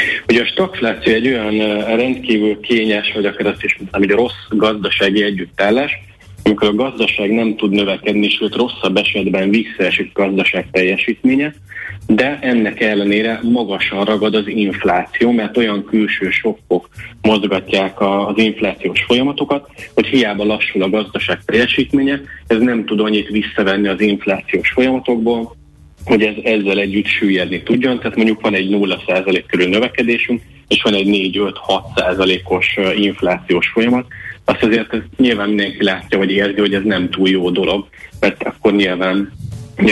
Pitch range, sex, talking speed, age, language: 100-110 Hz, male, 140 wpm, 30-49, Hungarian